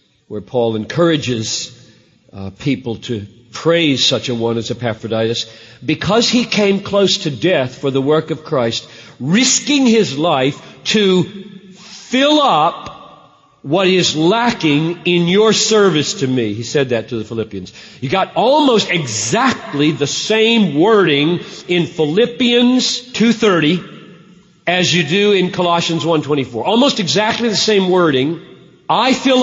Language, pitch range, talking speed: English, 150-215 Hz, 140 wpm